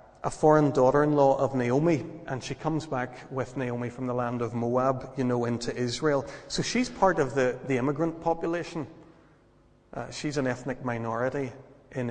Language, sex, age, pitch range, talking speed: English, male, 30-49, 125-145 Hz, 170 wpm